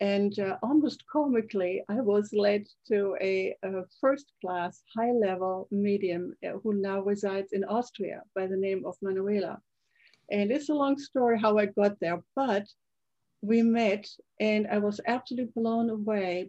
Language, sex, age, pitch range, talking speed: English, female, 60-79, 195-225 Hz, 150 wpm